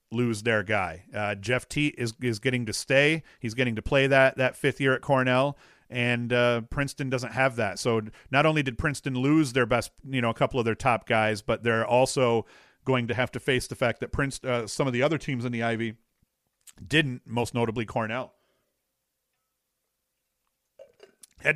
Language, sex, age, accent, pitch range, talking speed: English, male, 40-59, American, 115-140 Hz, 190 wpm